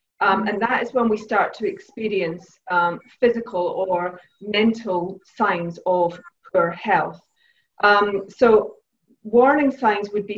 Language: English